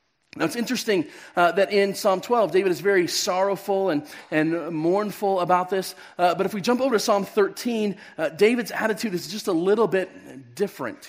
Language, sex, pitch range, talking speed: English, male, 180-220 Hz, 190 wpm